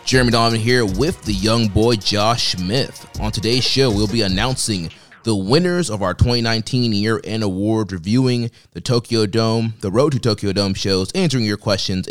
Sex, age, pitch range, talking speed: male, 20-39, 100-120 Hz, 175 wpm